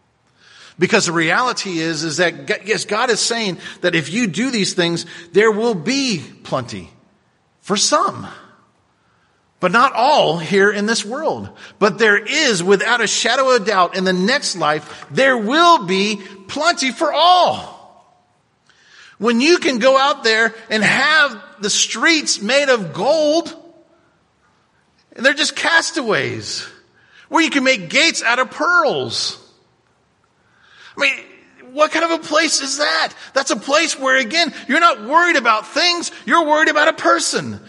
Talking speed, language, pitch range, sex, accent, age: 155 wpm, English, 200-285 Hz, male, American, 40-59